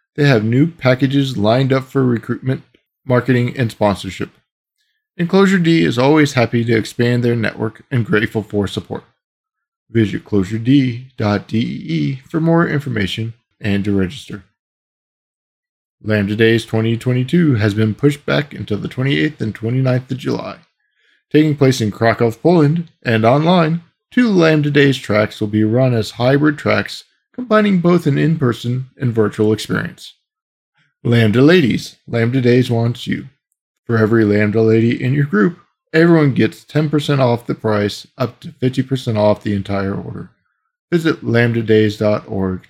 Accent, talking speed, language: American, 140 wpm, English